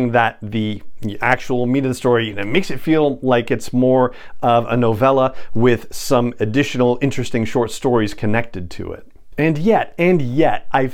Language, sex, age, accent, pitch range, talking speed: English, male, 40-59, American, 110-135 Hz, 165 wpm